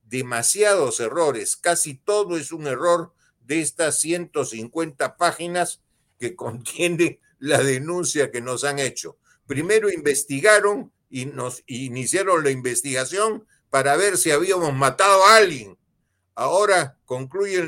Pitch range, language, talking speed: 135-190 Hz, Spanish, 120 wpm